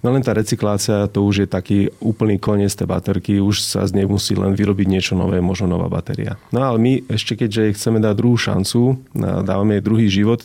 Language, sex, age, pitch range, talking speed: Slovak, male, 30-49, 100-120 Hz, 210 wpm